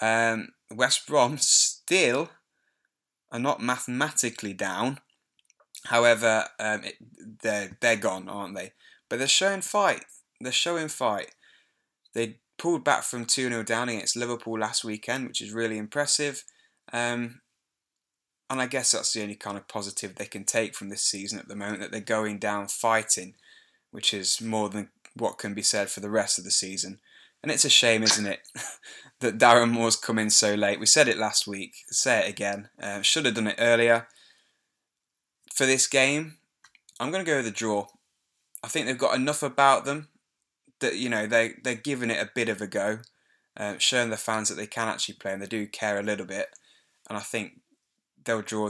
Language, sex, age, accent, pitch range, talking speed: English, male, 10-29, British, 105-125 Hz, 185 wpm